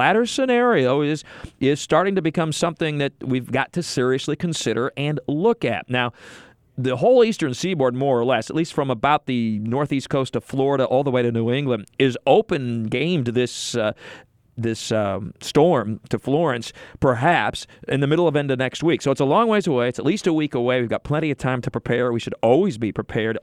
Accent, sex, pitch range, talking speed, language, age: American, male, 120-150 Hz, 215 wpm, English, 40-59